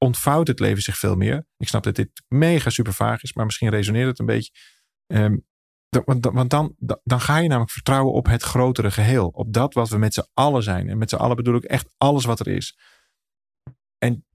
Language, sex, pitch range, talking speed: Dutch, male, 105-130 Hz, 220 wpm